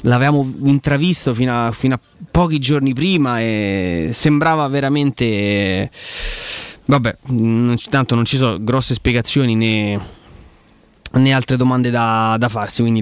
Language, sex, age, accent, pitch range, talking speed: Italian, male, 20-39, native, 115-140 Hz, 125 wpm